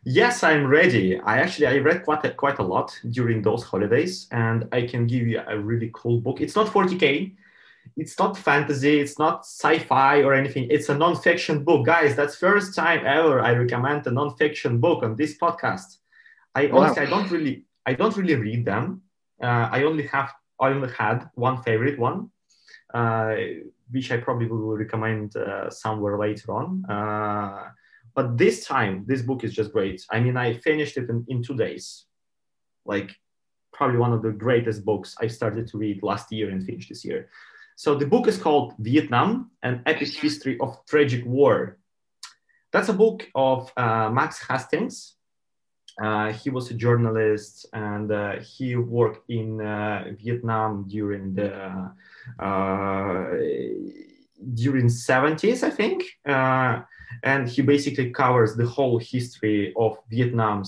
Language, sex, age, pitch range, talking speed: English, male, 30-49, 110-145 Hz, 165 wpm